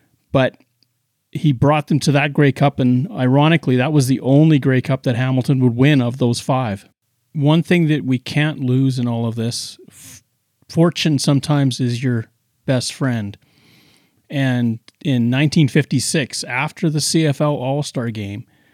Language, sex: English, male